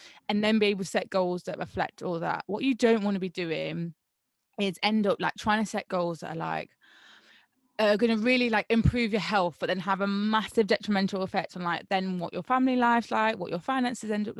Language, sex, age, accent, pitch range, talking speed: English, female, 20-39, British, 180-215 Hz, 240 wpm